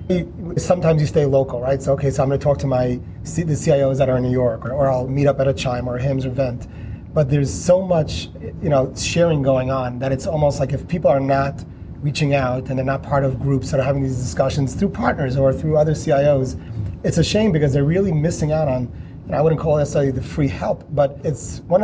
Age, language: 30-49, English